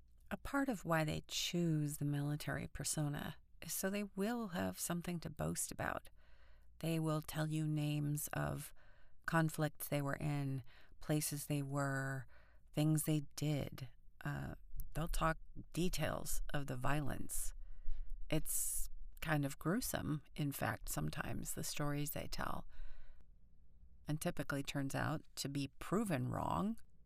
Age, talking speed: 40-59, 135 wpm